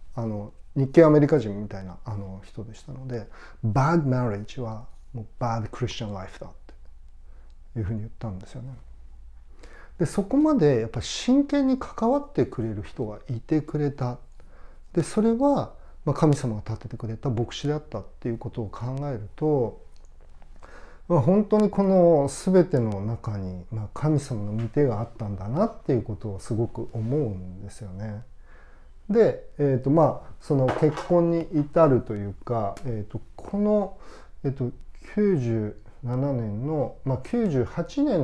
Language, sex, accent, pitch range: Japanese, male, native, 105-150 Hz